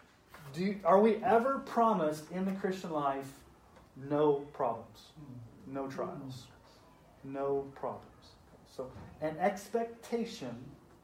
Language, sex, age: English, male, 40-59